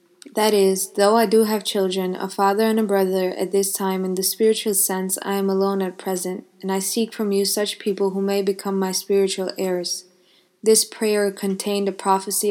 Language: English